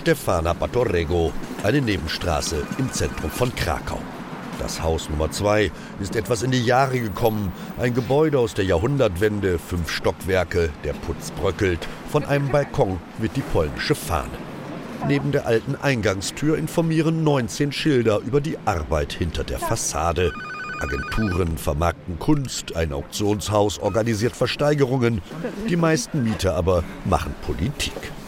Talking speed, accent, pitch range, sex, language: 130 wpm, German, 85-140 Hz, male, German